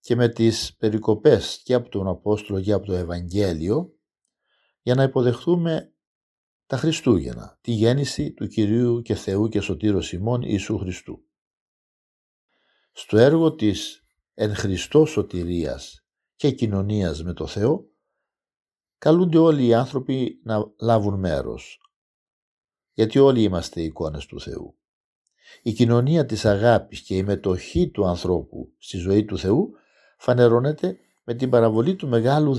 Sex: male